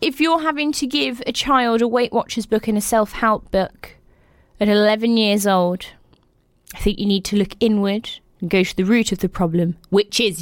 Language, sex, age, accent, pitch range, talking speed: English, female, 20-39, British, 185-230 Hz, 205 wpm